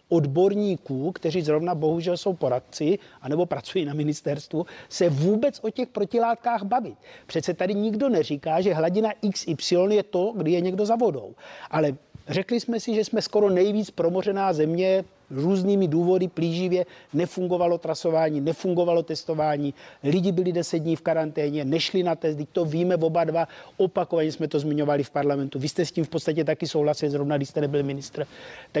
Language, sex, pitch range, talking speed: Czech, male, 155-195 Hz, 165 wpm